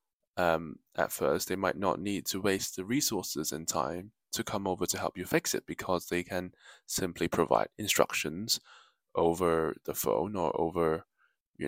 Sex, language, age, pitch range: male, English, 10-29, 85-105 Hz